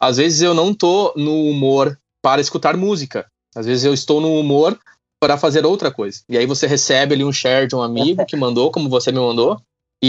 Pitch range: 130-175 Hz